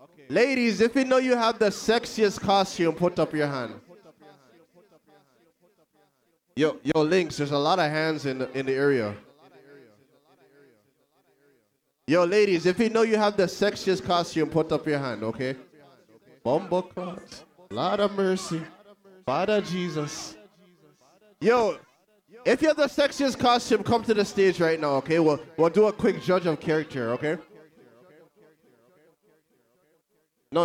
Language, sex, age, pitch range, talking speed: English, male, 20-39, 145-205 Hz, 145 wpm